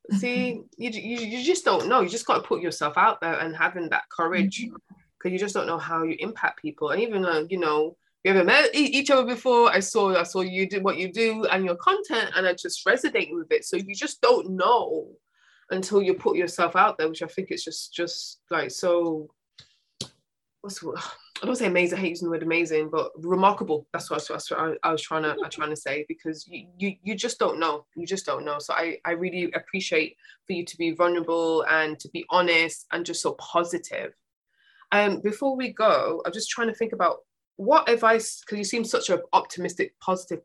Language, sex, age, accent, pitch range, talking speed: English, female, 20-39, British, 165-230 Hz, 220 wpm